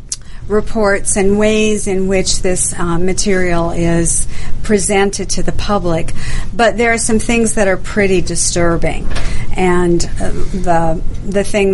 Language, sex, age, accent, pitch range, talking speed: English, female, 50-69, American, 170-200 Hz, 140 wpm